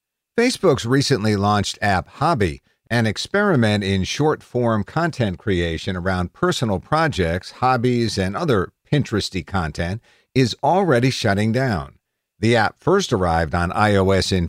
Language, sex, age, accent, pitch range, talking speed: English, male, 50-69, American, 90-120 Hz, 125 wpm